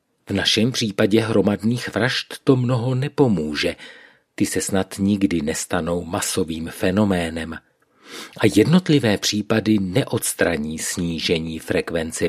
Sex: male